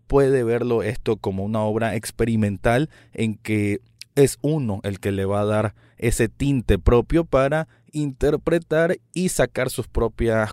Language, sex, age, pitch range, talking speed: Spanish, male, 20-39, 105-130 Hz, 150 wpm